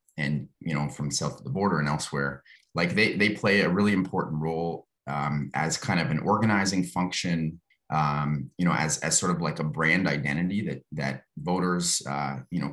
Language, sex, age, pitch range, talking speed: English, male, 30-49, 75-95 Hz, 200 wpm